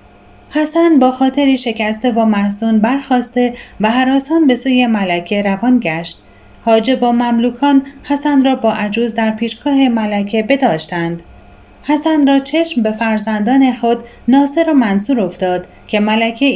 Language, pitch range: Persian, 210-275 Hz